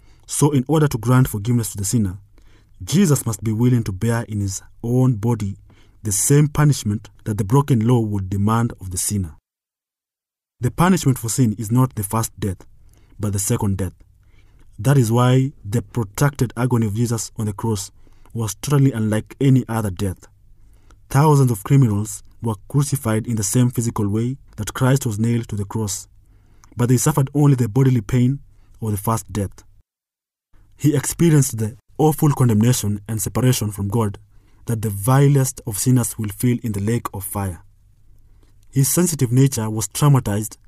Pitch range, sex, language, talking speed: 100-130 Hz, male, English, 170 wpm